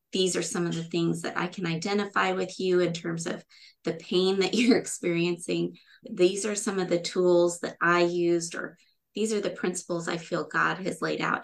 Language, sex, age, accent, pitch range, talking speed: English, female, 20-39, American, 170-210 Hz, 210 wpm